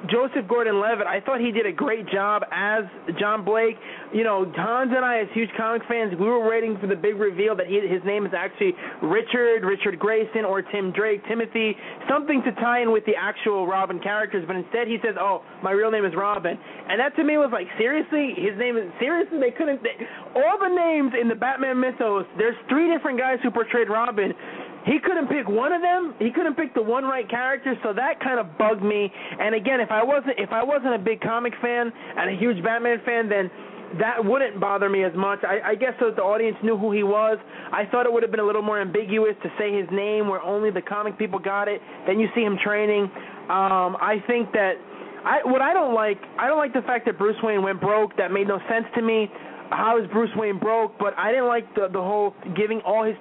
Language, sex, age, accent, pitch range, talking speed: English, male, 30-49, American, 205-240 Hz, 230 wpm